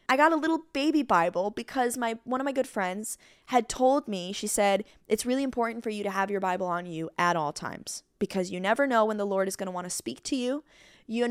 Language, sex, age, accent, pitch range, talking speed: English, female, 20-39, American, 185-240 Hz, 255 wpm